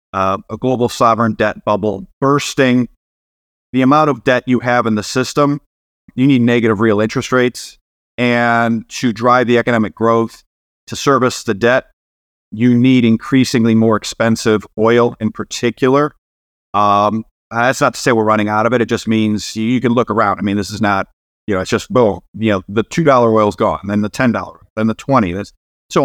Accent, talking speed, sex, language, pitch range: American, 195 wpm, male, English, 105-130 Hz